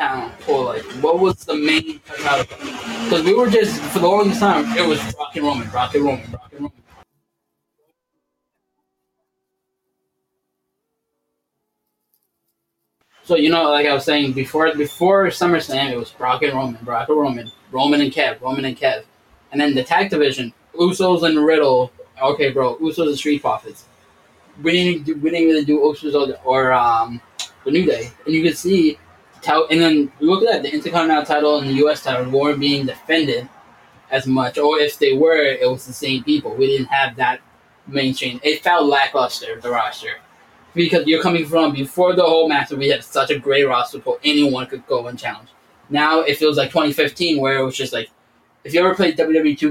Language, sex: English, male